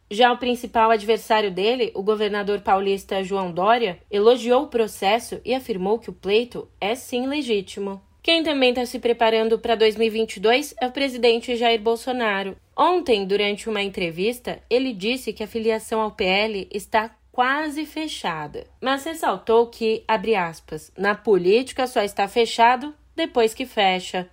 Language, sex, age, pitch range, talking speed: Portuguese, female, 20-39, 205-250 Hz, 150 wpm